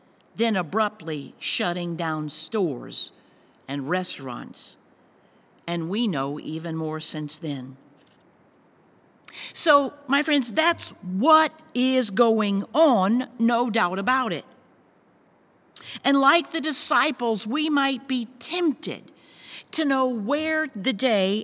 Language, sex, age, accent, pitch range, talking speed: English, female, 50-69, American, 210-295 Hz, 110 wpm